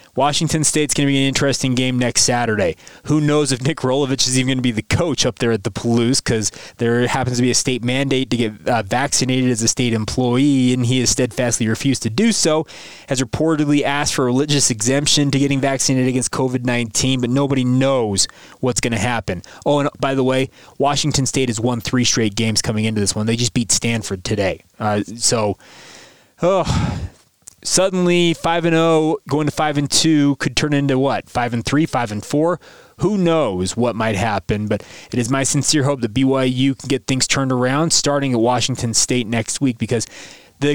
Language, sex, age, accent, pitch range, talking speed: English, male, 20-39, American, 120-145 Hz, 190 wpm